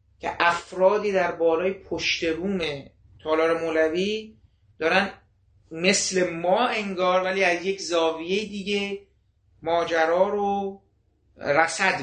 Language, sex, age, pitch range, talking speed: Persian, male, 30-49, 145-185 Hz, 95 wpm